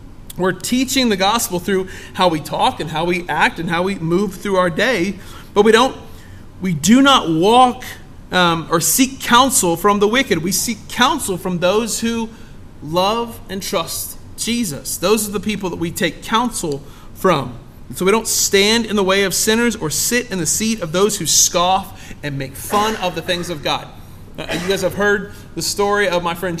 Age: 30-49